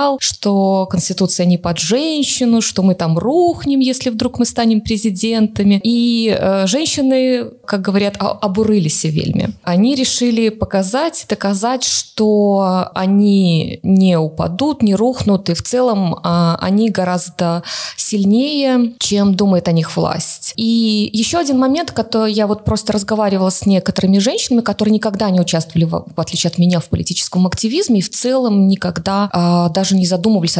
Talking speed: 150 wpm